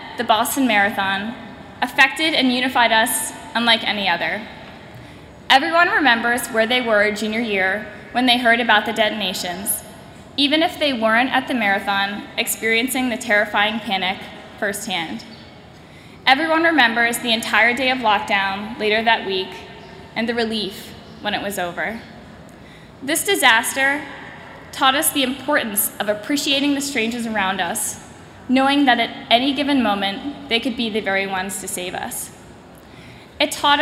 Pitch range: 210-270 Hz